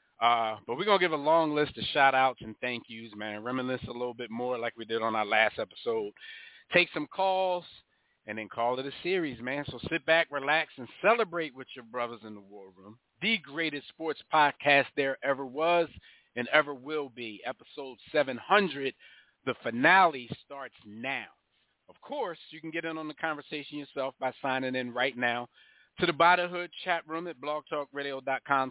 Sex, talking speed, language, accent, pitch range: male, 190 wpm, English, American, 125-165 Hz